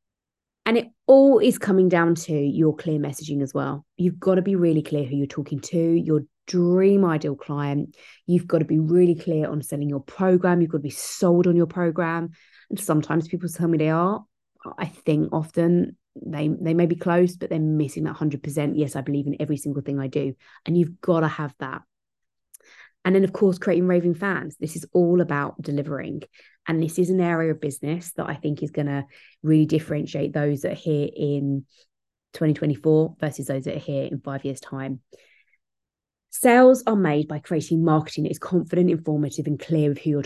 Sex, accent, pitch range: female, British, 145-175 Hz